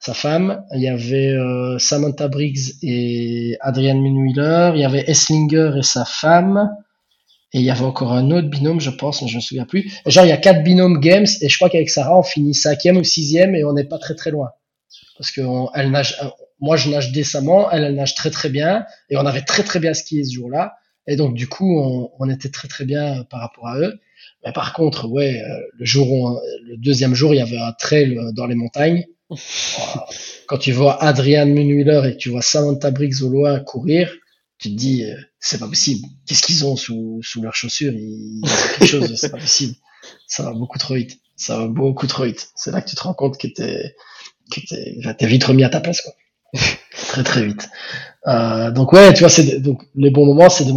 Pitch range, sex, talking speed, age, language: 130-155 Hz, male, 220 wpm, 20-39, French